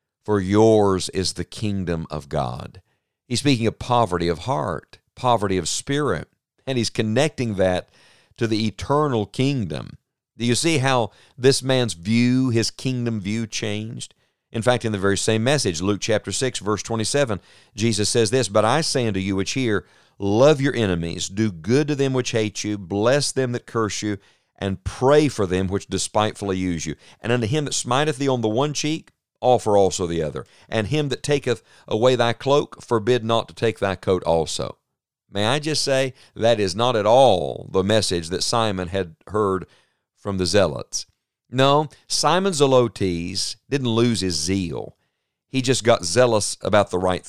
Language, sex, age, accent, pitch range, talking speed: English, male, 50-69, American, 100-130 Hz, 180 wpm